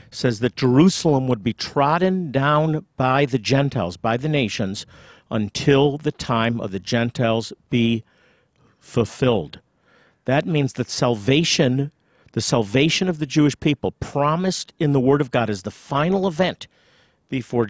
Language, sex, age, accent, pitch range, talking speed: English, male, 50-69, American, 115-145 Hz, 140 wpm